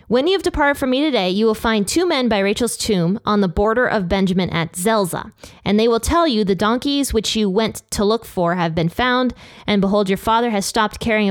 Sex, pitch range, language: female, 175-225 Hz, English